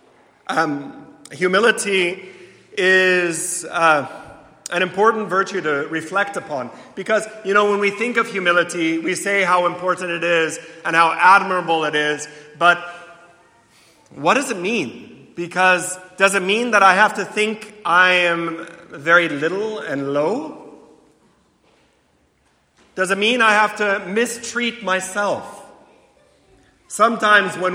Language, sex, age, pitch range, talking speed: English, male, 30-49, 165-215 Hz, 125 wpm